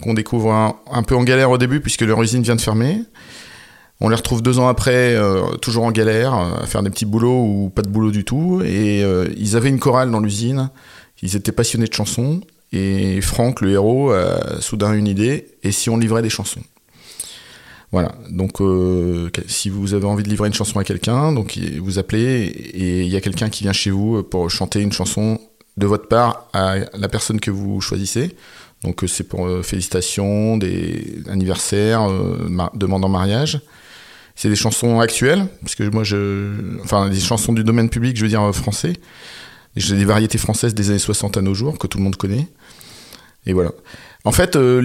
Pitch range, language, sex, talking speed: 100-120 Hz, French, male, 205 wpm